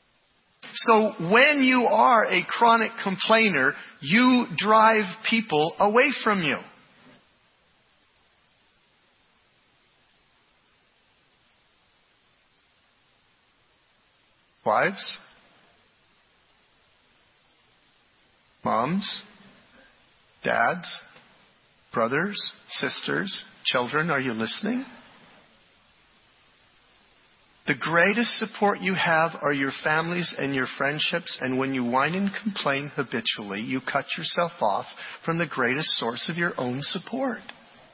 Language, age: English, 50-69